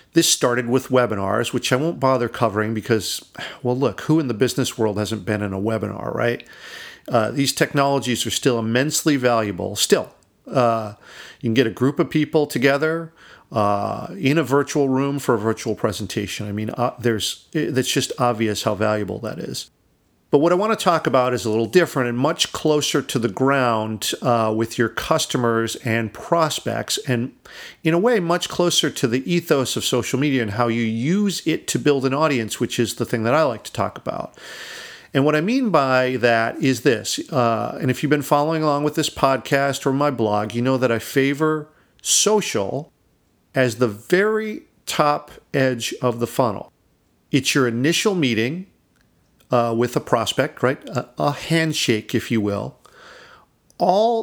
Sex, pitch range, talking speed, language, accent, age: male, 115-155 Hz, 185 wpm, English, American, 50-69